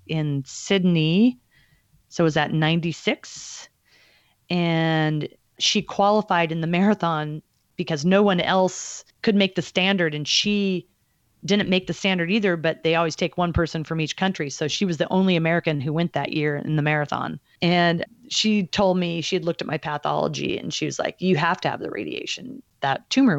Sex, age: female, 30-49